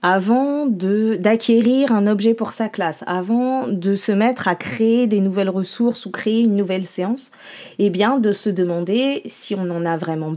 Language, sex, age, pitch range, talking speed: French, female, 20-39, 185-235 Hz, 185 wpm